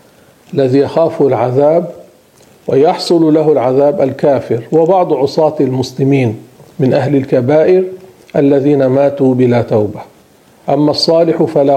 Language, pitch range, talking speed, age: Arabic, 135-170 Hz, 100 wpm, 50-69